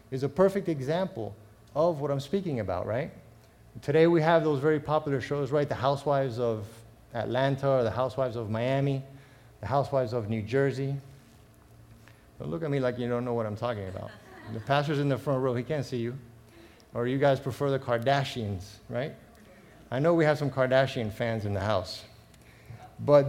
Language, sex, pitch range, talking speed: English, male, 115-160 Hz, 185 wpm